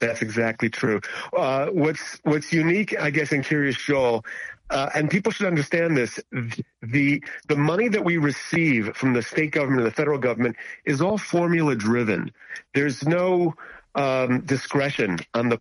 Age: 40-59